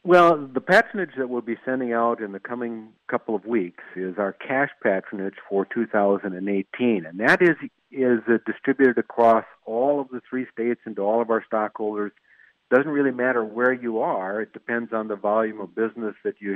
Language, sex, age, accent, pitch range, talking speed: English, male, 50-69, American, 105-125 Hz, 190 wpm